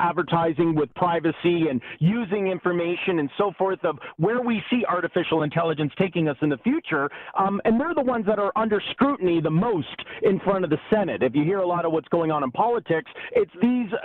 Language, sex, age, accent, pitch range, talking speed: English, male, 40-59, American, 165-210 Hz, 210 wpm